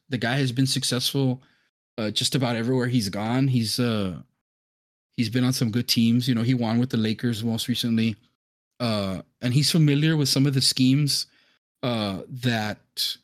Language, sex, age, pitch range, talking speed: English, male, 20-39, 120-145 Hz, 175 wpm